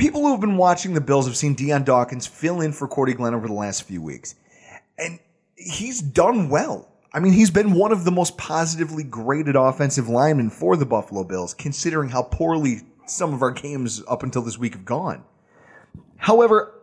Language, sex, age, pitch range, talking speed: English, male, 30-49, 125-185 Hz, 195 wpm